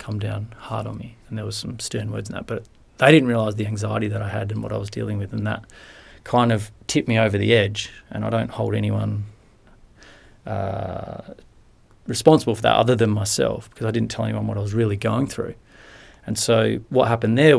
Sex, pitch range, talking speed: male, 105-120 Hz, 220 wpm